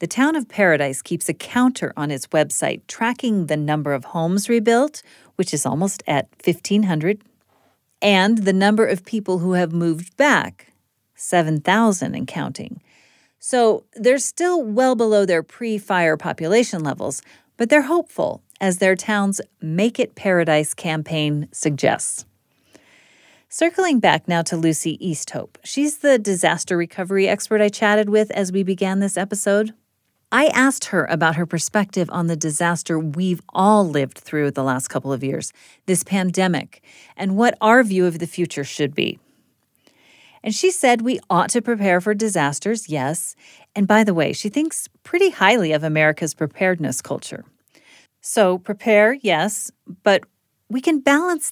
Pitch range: 165-230 Hz